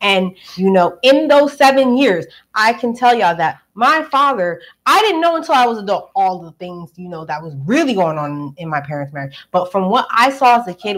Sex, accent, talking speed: female, American, 235 wpm